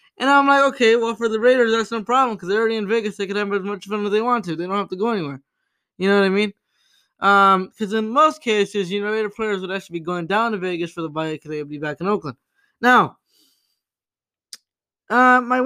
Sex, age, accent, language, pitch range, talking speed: male, 20-39, American, English, 195-250 Hz, 250 wpm